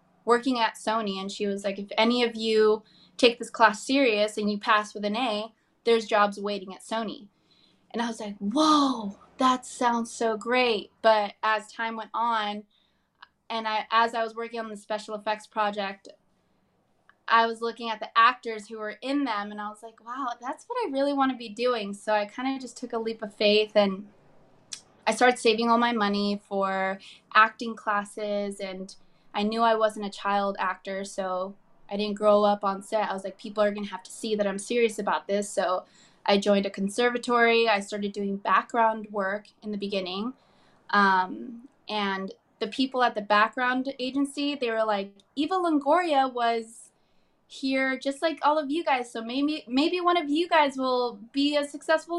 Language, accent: English, American